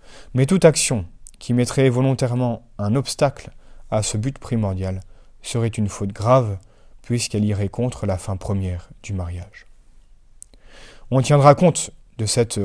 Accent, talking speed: French, 140 wpm